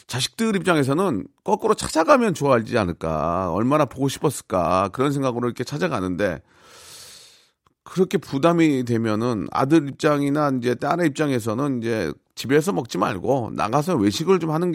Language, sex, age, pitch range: Korean, male, 40-59, 105-150 Hz